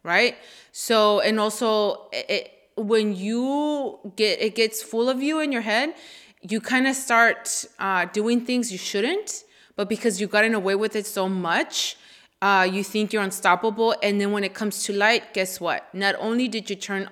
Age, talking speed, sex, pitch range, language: 20-39, 190 wpm, female, 185-220 Hz, English